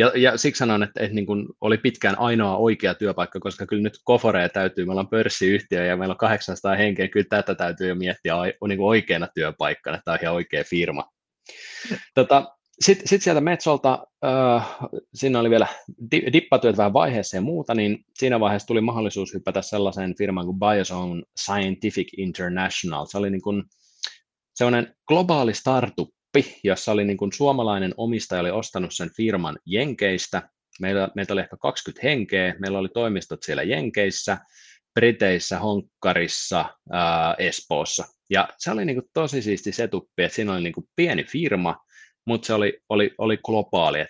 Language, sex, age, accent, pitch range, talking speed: Finnish, male, 20-39, native, 95-120 Hz, 170 wpm